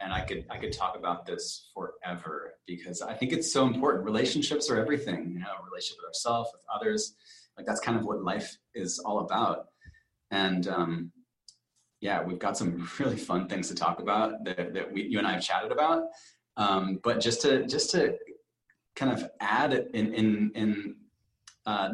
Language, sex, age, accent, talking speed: English, male, 30-49, American, 190 wpm